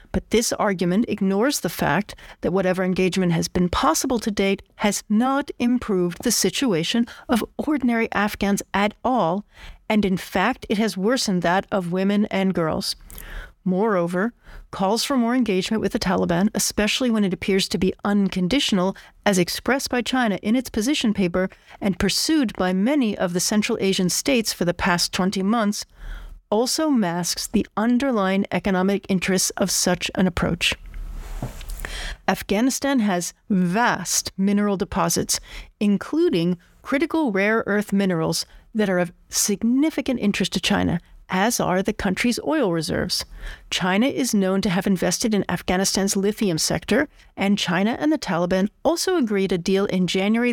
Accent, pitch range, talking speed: American, 185-235 Hz, 150 wpm